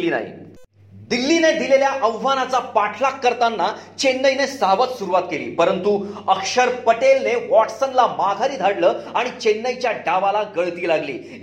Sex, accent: male, native